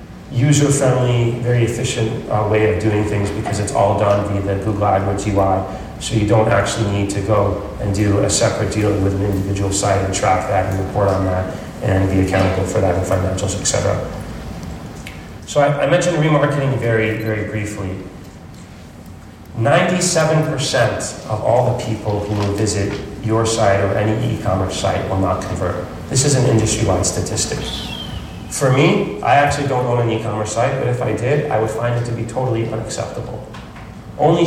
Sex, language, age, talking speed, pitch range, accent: male, English, 30-49, 175 wpm, 100-120 Hz, American